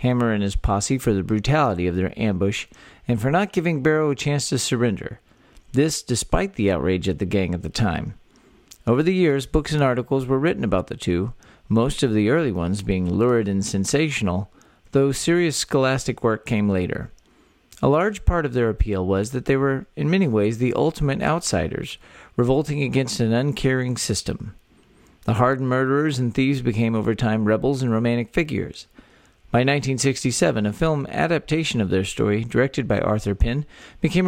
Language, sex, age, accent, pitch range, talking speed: English, male, 50-69, American, 105-145 Hz, 175 wpm